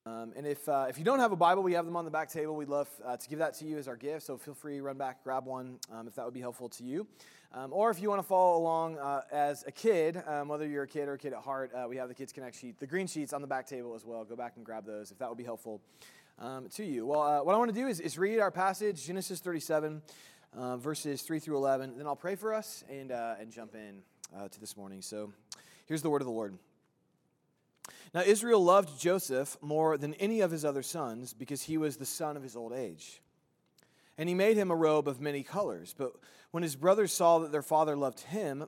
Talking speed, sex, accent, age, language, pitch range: 270 wpm, male, American, 20-39, English, 130-175 Hz